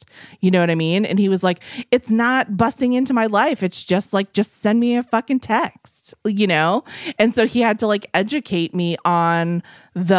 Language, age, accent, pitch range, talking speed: English, 30-49, American, 170-210 Hz, 210 wpm